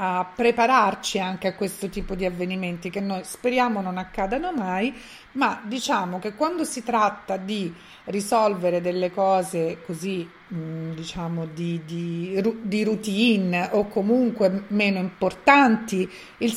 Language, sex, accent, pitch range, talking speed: Italian, female, native, 175-225 Hz, 125 wpm